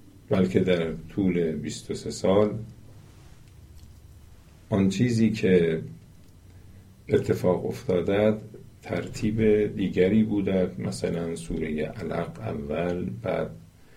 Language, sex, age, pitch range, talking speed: Persian, male, 50-69, 90-115 Hz, 75 wpm